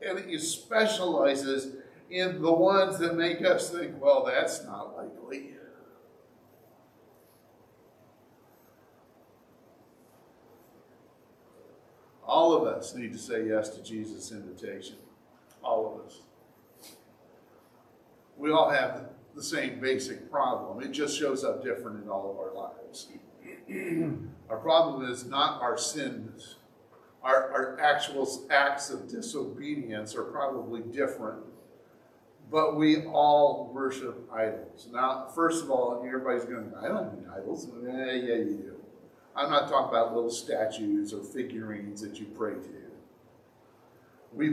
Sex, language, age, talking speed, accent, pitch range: male, English, 50-69, 125 wpm, American, 120-155 Hz